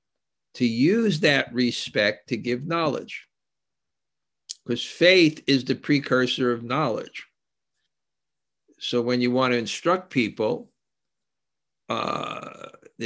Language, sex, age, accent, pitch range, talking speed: English, male, 60-79, American, 110-135 Hz, 95 wpm